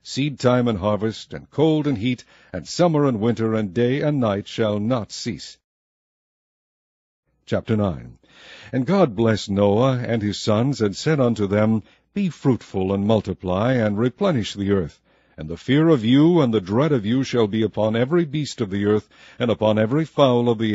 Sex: male